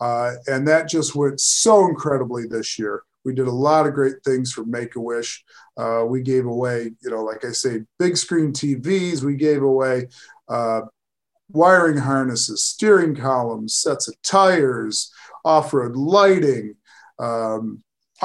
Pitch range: 130-160 Hz